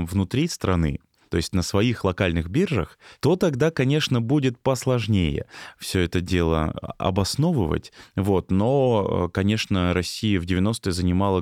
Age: 20-39